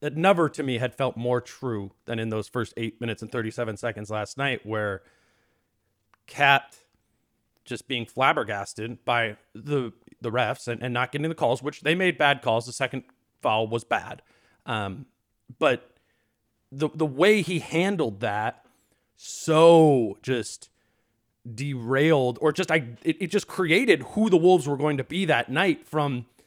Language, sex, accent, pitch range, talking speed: English, male, American, 115-160 Hz, 165 wpm